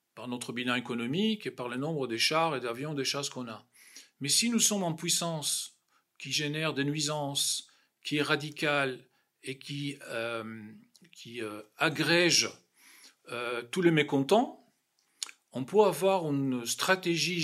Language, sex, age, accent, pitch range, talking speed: French, male, 50-69, French, 130-175 Hz, 150 wpm